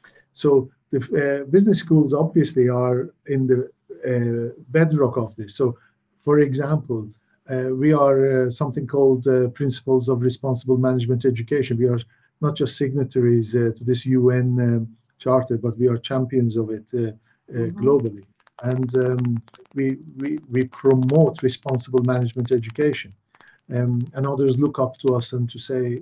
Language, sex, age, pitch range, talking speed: English, male, 50-69, 120-135 Hz, 155 wpm